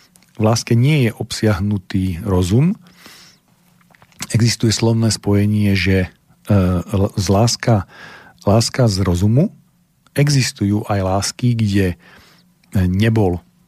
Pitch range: 100-125 Hz